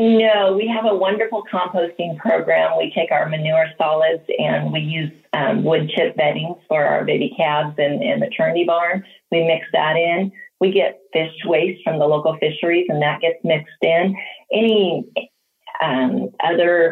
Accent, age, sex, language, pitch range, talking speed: American, 30-49, female, English, 155-200 Hz, 165 wpm